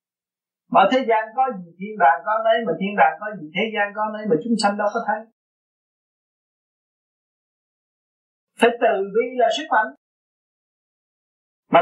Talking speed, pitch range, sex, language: 155 wpm, 185-255 Hz, male, Vietnamese